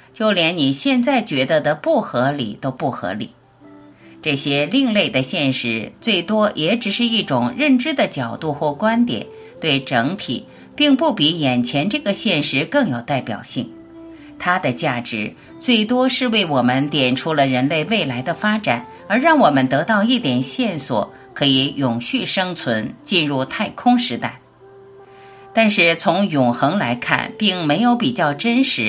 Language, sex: Chinese, female